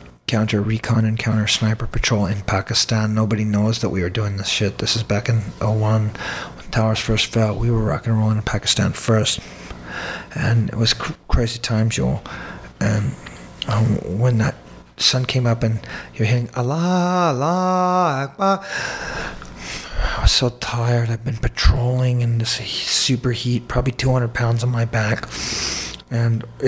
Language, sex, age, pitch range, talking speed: English, male, 40-59, 105-125 Hz, 150 wpm